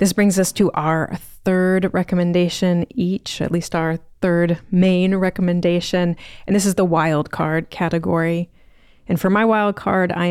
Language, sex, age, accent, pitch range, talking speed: English, female, 30-49, American, 160-185 Hz, 155 wpm